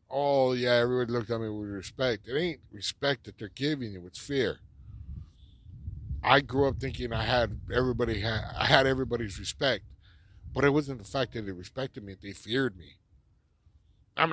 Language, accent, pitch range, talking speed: English, American, 95-125 Hz, 170 wpm